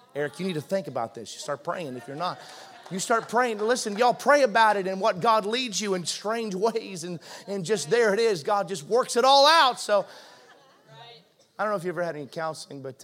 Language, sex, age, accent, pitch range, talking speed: English, male, 30-49, American, 155-210 Hz, 240 wpm